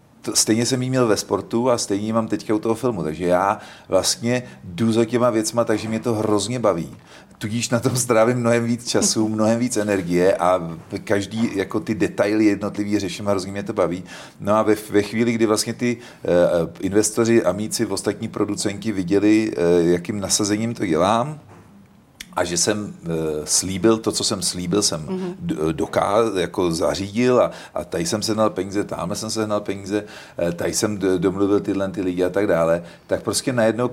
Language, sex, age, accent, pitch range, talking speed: Czech, male, 40-59, native, 100-115 Hz, 175 wpm